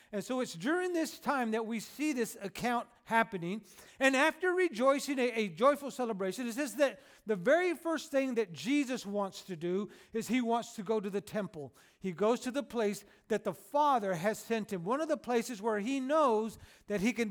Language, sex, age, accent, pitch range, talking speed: English, male, 40-59, American, 215-265 Hz, 210 wpm